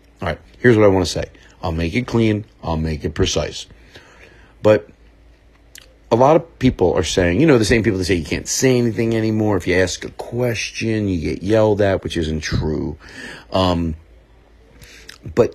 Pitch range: 85-110 Hz